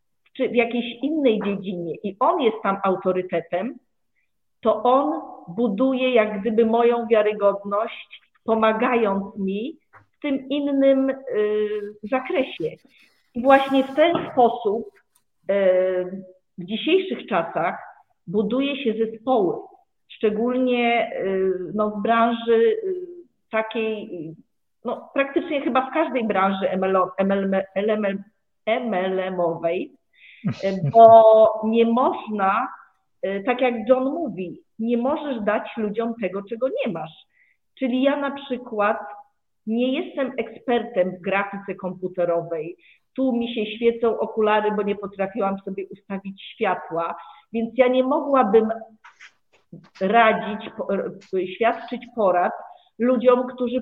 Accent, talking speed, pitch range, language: native, 100 wpm, 195-255 Hz, Polish